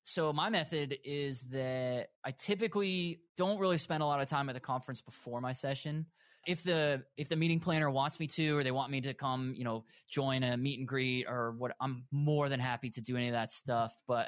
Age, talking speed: 20-39, 230 wpm